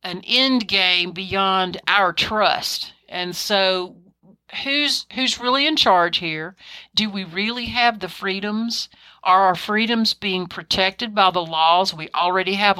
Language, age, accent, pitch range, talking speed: English, 50-69, American, 170-215 Hz, 145 wpm